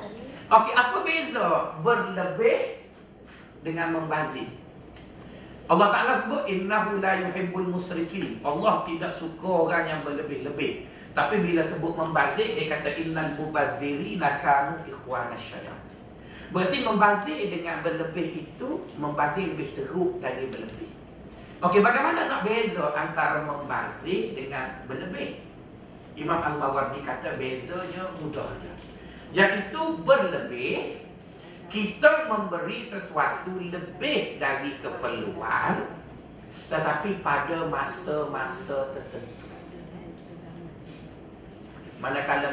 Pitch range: 150-215 Hz